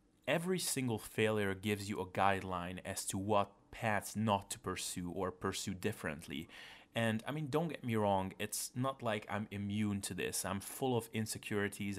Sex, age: male, 30-49